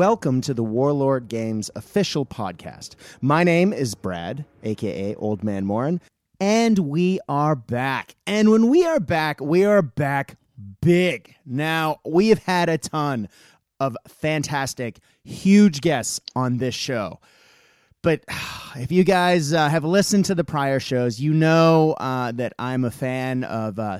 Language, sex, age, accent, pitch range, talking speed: English, male, 30-49, American, 125-170 Hz, 155 wpm